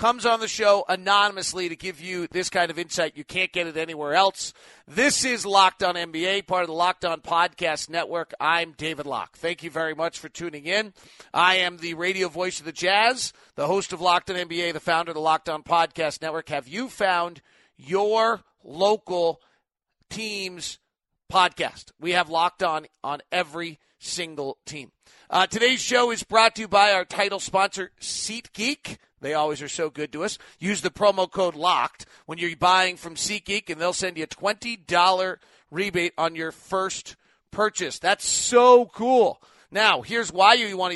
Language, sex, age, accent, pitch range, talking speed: English, male, 40-59, American, 170-205 Hz, 185 wpm